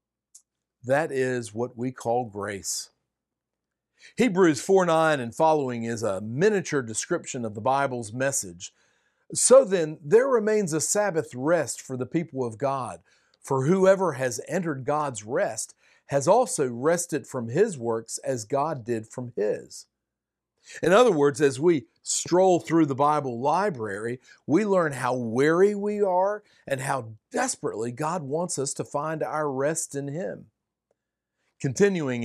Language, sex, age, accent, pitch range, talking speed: English, male, 50-69, American, 125-165 Hz, 140 wpm